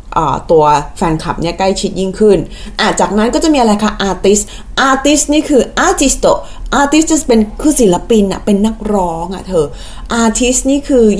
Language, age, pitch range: Thai, 20-39, 190-245 Hz